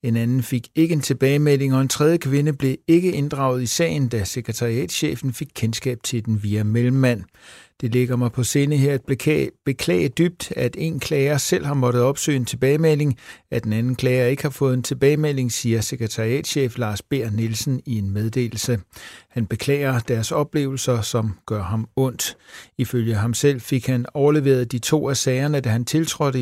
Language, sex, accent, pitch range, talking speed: Danish, male, native, 120-140 Hz, 180 wpm